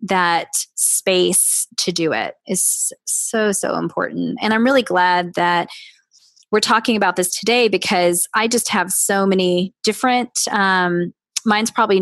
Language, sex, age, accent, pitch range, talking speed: English, female, 20-39, American, 180-210 Hz, 145 wpm